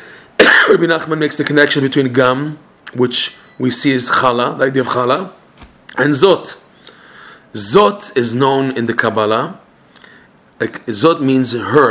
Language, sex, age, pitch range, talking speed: English, male, 30-49, 130-160 Hz, 135 wpm